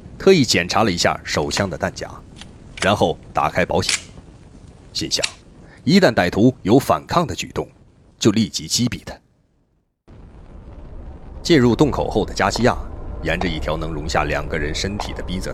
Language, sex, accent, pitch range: Chinese, male, native, 75-95 Hz